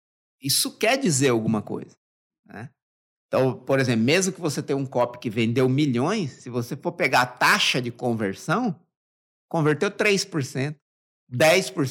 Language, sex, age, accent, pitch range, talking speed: Portuguese, male, 50-69, Brazilian, 125-190 Hz, 140 wpm